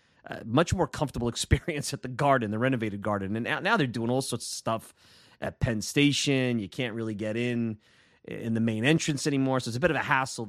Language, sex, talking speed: English, male, 230 wpm